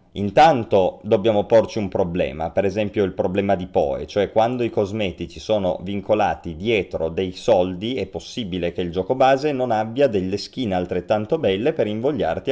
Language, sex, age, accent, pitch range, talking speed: Italian, male, 30-49, native, 95-125 Hz, 165 wpm